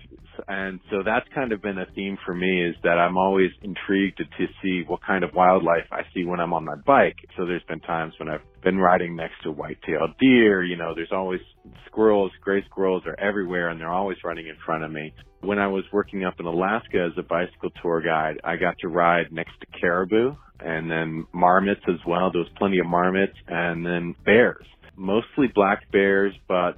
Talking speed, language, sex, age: 210 wpm, English, male, 40-59